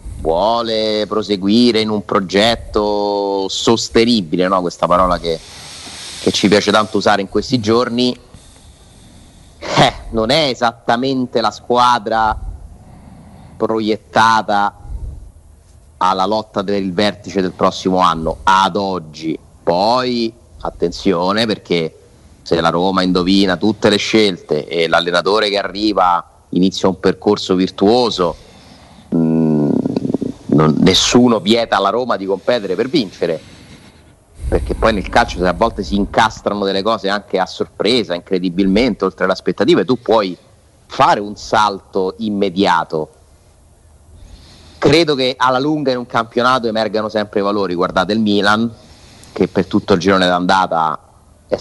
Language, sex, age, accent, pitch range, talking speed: Italian, male, 30-49, native, 90-110 Hz, 120 wpm